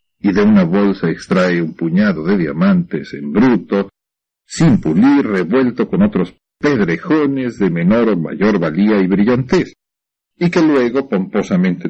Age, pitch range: 50-69, 95-150 Hz